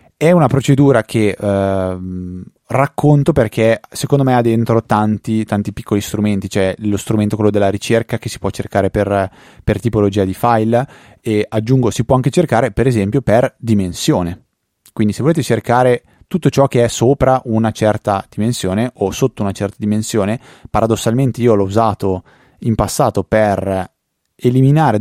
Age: 20-39